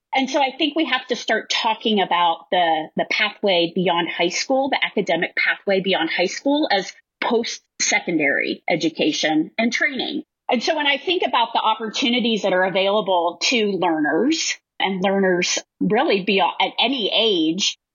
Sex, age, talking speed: female, 30-49, 155 wpm